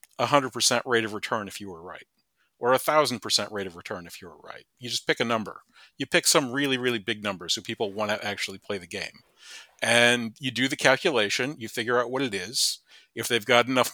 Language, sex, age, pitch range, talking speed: English, male, 40-59, 110-130 Hz, 235 wpm